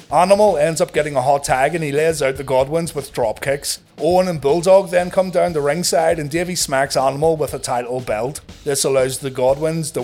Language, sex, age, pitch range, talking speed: English, male, 30-49, 125-165 Hz, 220 wpm